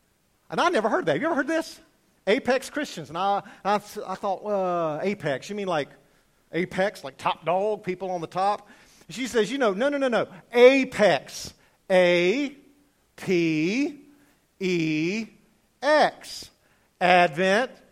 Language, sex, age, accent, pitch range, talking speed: English, male, 50-69, American, 155-255 Hz, 150 wpm